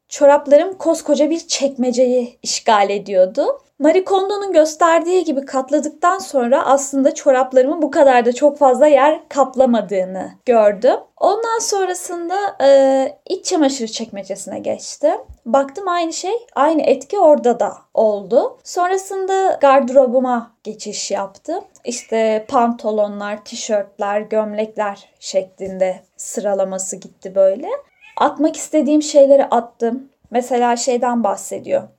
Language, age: Turkish, 10-29